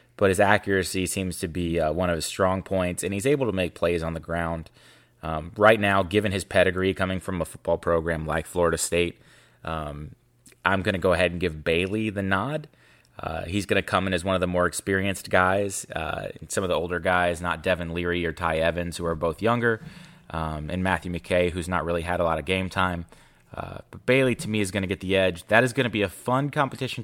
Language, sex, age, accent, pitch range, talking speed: English, male, 20-39, American, 85-100 Hz, 240 wpm